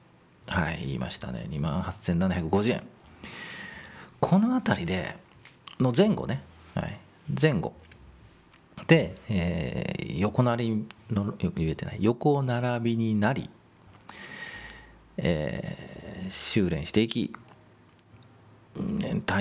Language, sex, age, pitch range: Japanese, male, 40-59, 95-145 Hz